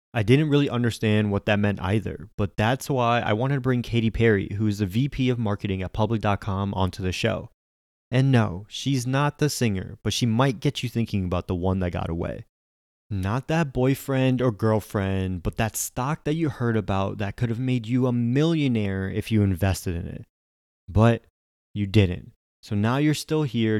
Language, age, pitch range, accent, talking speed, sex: English, 20-39, 95-125 Hz, American, 195 wpm, male